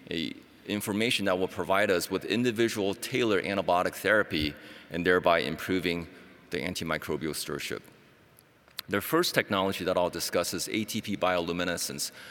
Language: English